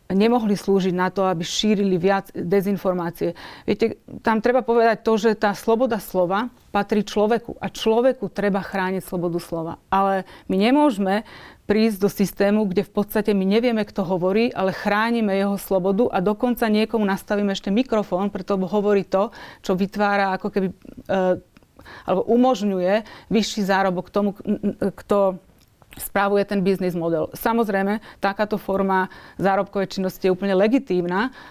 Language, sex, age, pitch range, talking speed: Slovak, female, 30-49, 185-215 Hz, 140 wpm